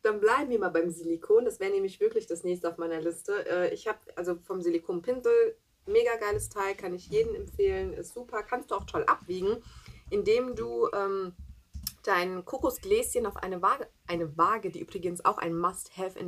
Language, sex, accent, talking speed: German, female, German, 185 wpm